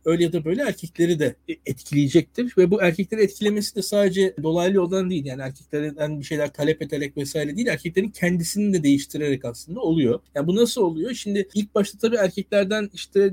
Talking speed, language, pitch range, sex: 185 wpm, Turkish, 160-215 Hz, male